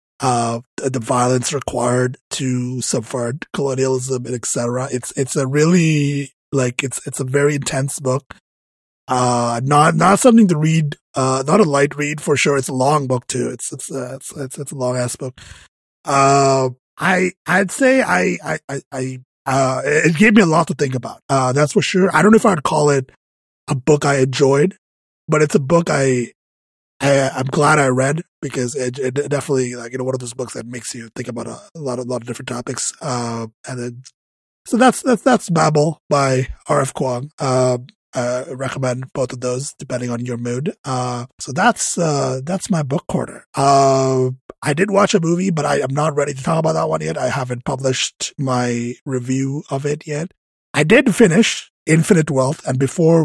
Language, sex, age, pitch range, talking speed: English, male, 20-39, 125-150 Hz, 195 wpm